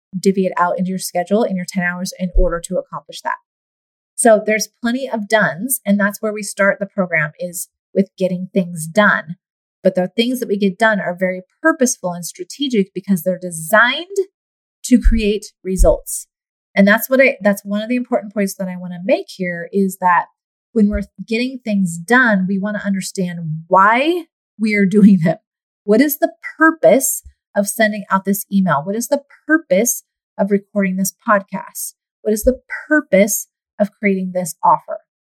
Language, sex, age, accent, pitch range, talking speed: English, female, 30-49, American, 190-250 Hz, 180 wpm